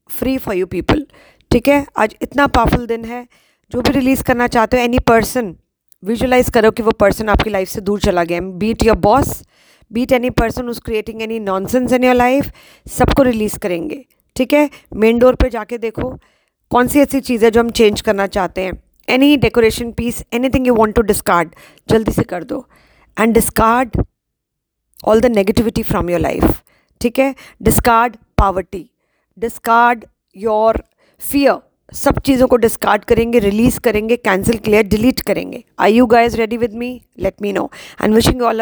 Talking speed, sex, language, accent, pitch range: 170 wpm, female, English, Indian, 210-245 Hz